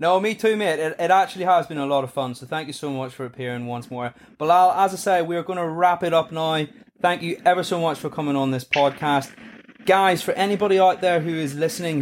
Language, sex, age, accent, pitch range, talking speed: English, male, 20-39, British, 130-160 Hz, 250 wpm